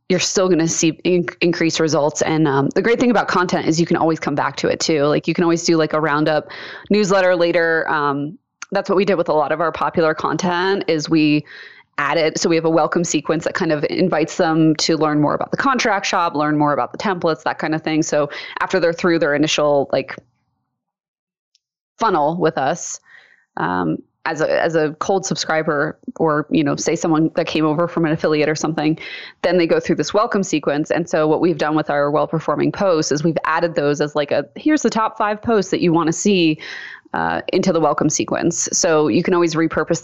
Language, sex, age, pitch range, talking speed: English, female, 20-39, 155-185 Hz, 220 wpm